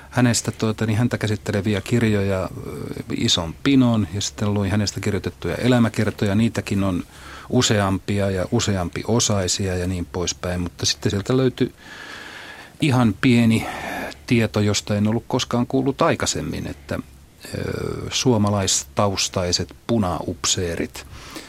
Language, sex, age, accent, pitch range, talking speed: Finnish, male, 40-59, native, 90-120 Hz, 105 wpm